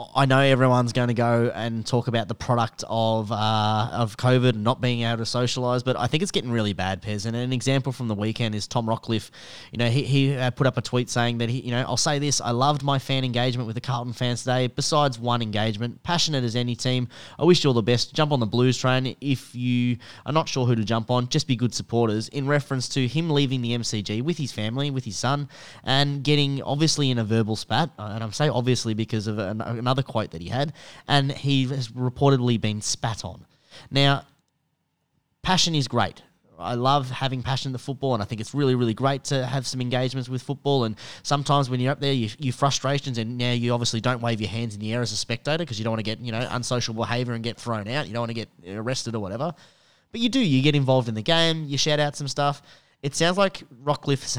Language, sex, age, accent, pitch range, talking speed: English, male, 10-29, Australian, 115-140 Hz, 240 wpm